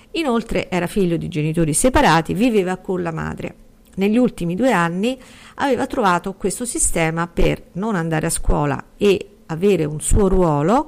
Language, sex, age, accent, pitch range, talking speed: Italian, female, 50-69, native, 160-215 Hz, 155 wpm